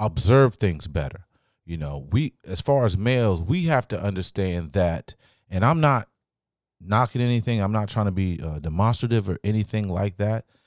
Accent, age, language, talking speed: American, 30-49, English, 175 wpm